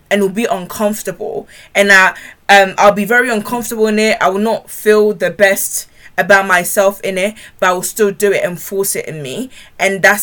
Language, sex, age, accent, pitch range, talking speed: English, female, 20-39, British, 190-220 Hz, 210 wpm